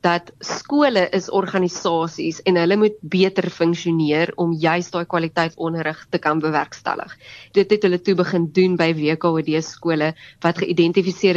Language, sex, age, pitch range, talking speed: English, female, 20-39, 160-185 Hz, 150 wpm